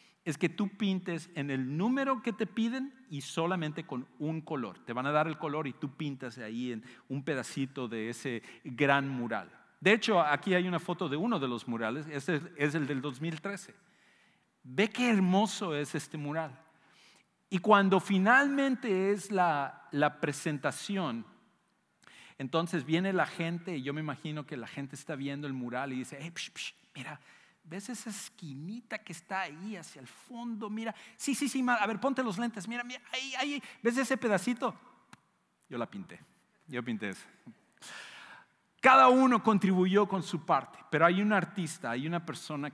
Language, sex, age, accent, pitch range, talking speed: English, male, 50-69, Mexican, 140-200 Hz, 180 wpm